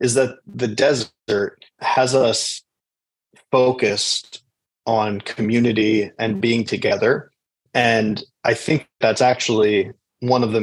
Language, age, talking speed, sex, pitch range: English, 30-49, 115 wpm, male, 110-120 Hz